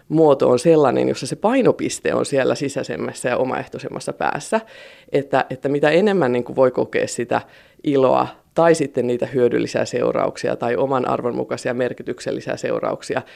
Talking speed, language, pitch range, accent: 135 wpm, Finnish, 140-185 Hz, native